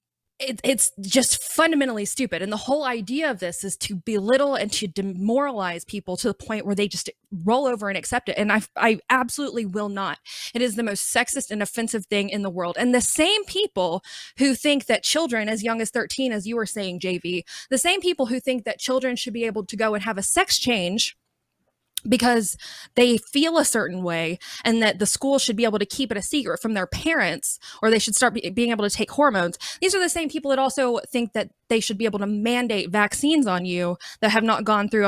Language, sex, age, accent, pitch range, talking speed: English, female, 20-39, American, 200-255 Hz, 225 wpm